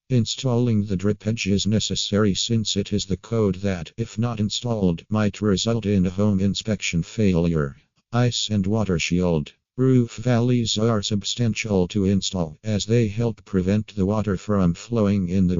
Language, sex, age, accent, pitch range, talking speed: English, male, 50-69, American, 95-110 Hz, 160 wpm